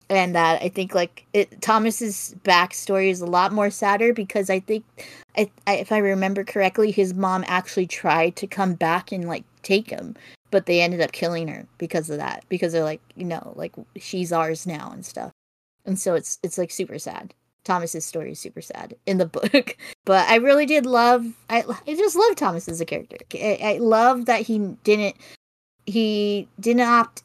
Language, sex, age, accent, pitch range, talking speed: English, female, 20-39, American, 175-220 Hz, 200 wpm